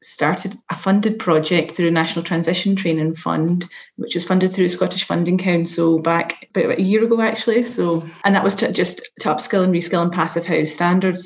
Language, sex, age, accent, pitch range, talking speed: English, female, 30-49, British, 160-185 Hz, 195 wpm